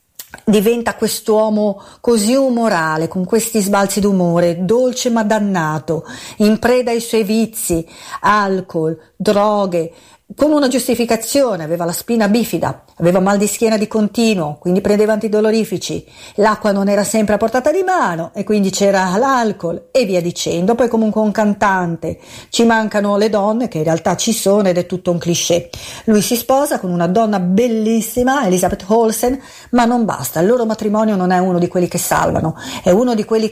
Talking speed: 165 wpm